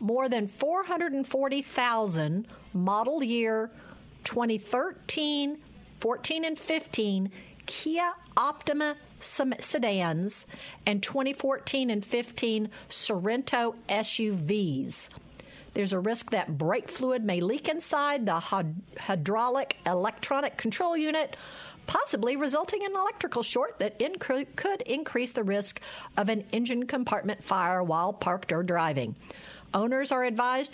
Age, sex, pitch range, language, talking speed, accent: 50-69, female, 200-270 Hz, English, 105 wpm, American